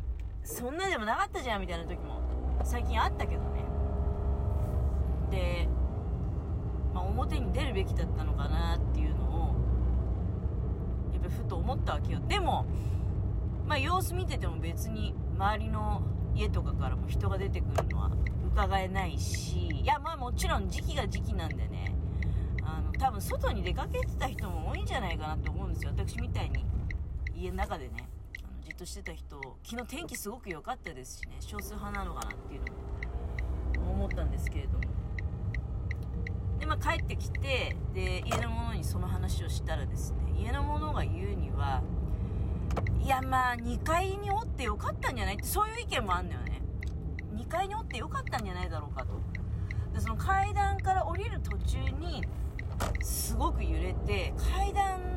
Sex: female